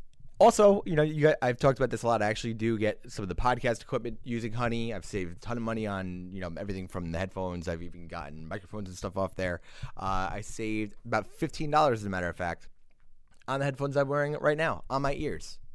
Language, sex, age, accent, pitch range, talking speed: English, male, 20-39, American, 100-140 Hz, 240 wpm